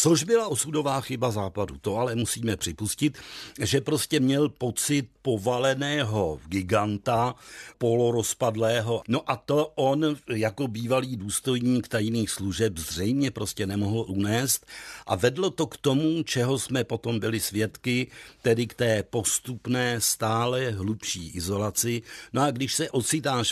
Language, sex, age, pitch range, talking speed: Czech, male, 60-79, 110-135 Hz, 130 wpm